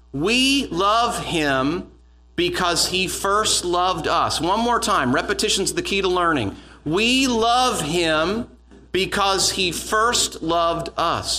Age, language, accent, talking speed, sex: 40-59, English, American, 125 wpm, male